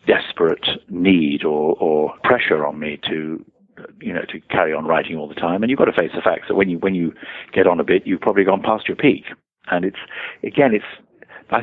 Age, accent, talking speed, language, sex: 50-69, British, 225 wpm, English, male